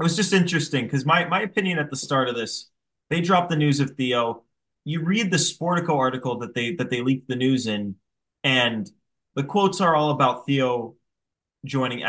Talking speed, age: 200 wpm, 20-39